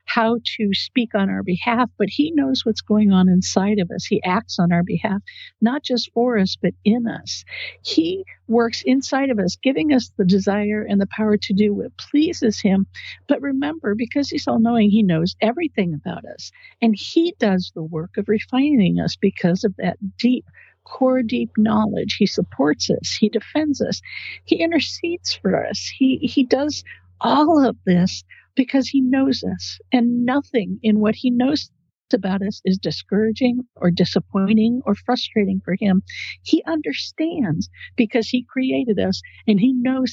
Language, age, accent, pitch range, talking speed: English, 60-79, American, 195-255 Hz, 170 wpm